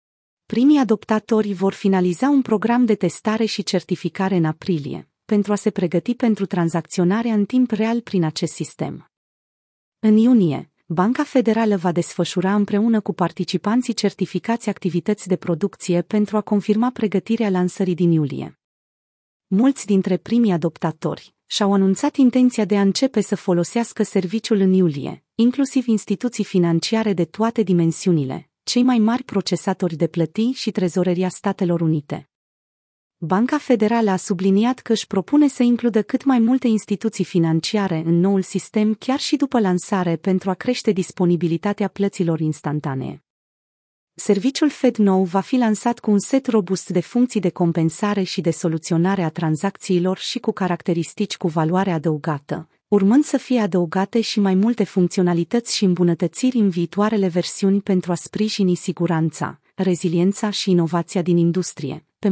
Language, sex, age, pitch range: Romanian, female, 30-49, 175-220 Hz